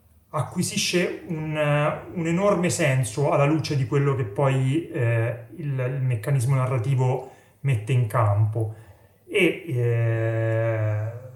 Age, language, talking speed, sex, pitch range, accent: 30-49, Italian, 110 wpm, male, 115-155 Hz, native